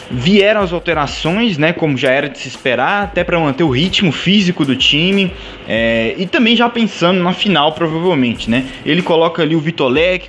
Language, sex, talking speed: Portuguese, male, 185 wpm